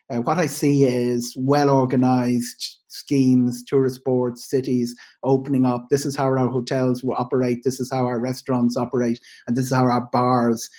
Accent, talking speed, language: Irish, 170 wpm, English